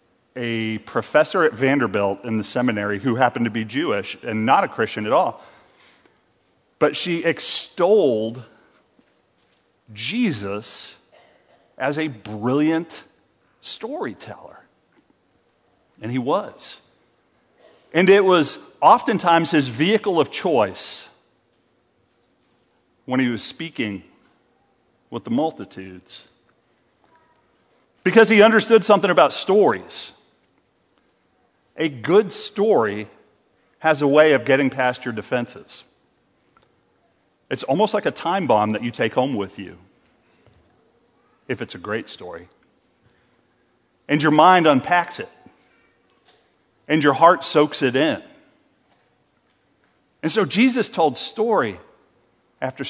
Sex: male